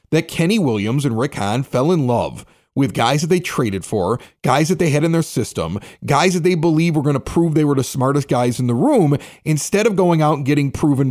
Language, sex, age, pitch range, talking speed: English, male, 30-49, 140-195 Hz, 245 wpm